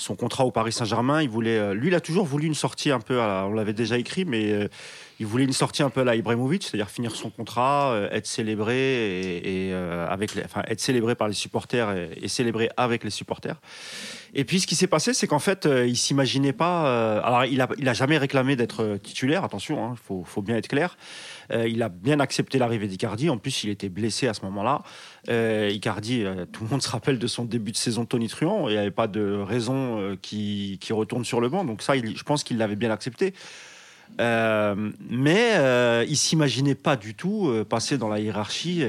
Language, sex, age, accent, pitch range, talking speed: French, male, 30-49, French, 105-140 Hz, 230 wpm